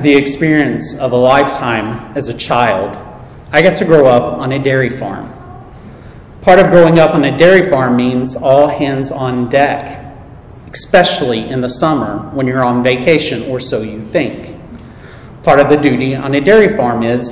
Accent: American